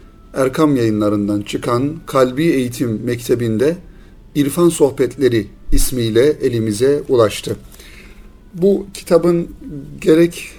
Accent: native